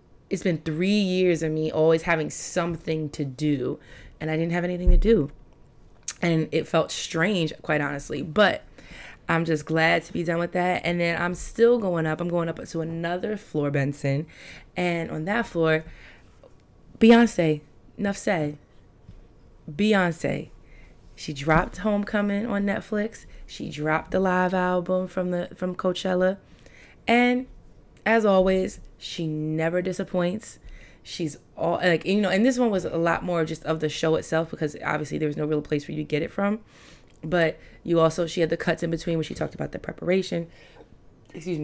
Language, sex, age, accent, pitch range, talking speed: English, female, 20-39, American, 155-185 Hz, 175 wpm